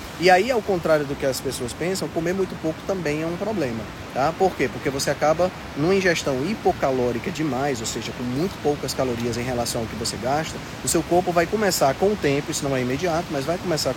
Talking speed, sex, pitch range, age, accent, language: 230 wpm, male, 140-185 Hz, 20-39, Brazilian, Portuguese